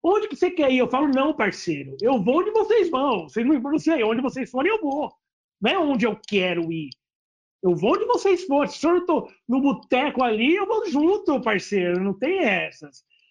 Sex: male